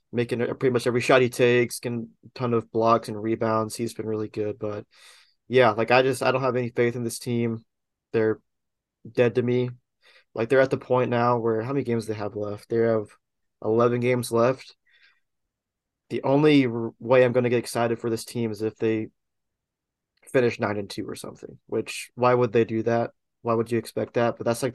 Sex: male